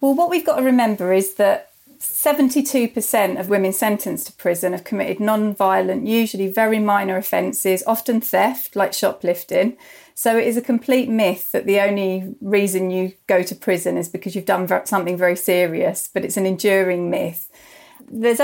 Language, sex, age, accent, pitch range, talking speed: English, female, 30-49, British, 190-220 Hz, 170 wpm